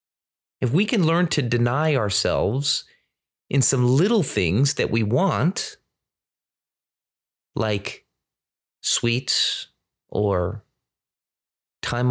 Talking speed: 90 wpm